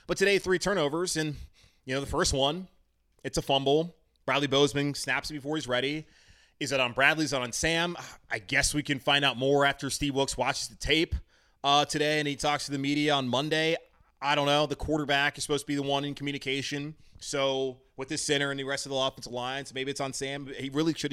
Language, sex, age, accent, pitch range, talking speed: English, male, 20-39, American, 125-145 Hz, 235 wpm